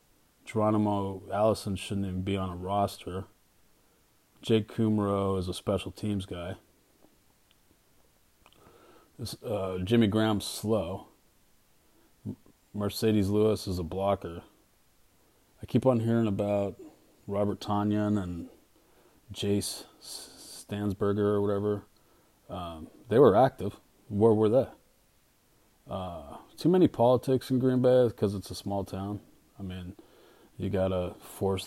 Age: 30-49